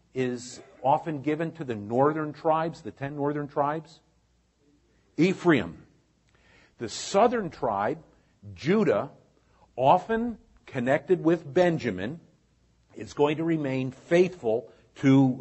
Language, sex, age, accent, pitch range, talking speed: Italian, male, 50-69, American, 110-155 Hz, 100 wpm